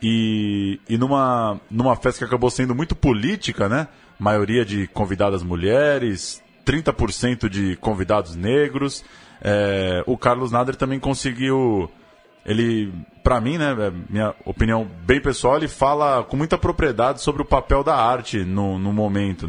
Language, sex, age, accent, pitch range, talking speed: Portuguese, male, 20-39, Brazilian, 100-130 Hz, 140 wpm